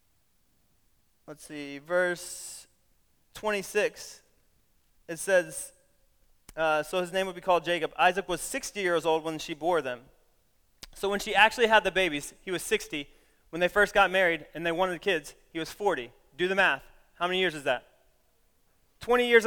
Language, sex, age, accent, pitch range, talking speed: English, male, 30-49, American, 155-200 Hz, 170 wpm